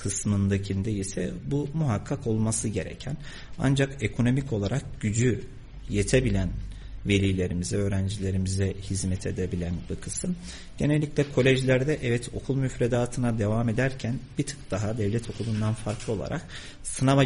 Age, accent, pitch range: 50-69, native, 100-135 Hz